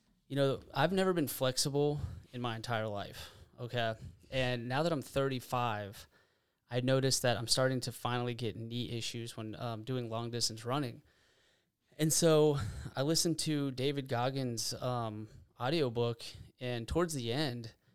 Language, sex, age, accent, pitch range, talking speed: English, male, 20-39, American, 115-130 Hz, 150 wpm